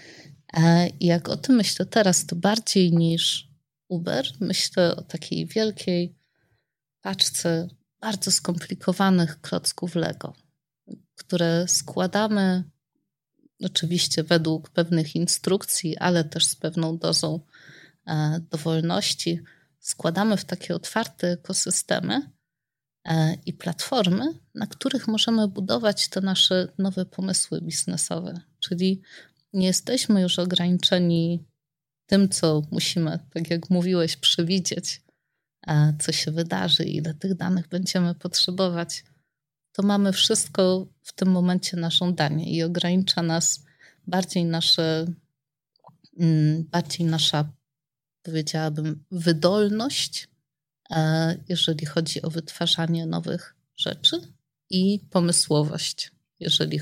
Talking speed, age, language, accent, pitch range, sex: 100 wpm, 30-49, Polish, native, 160-185 Hz, female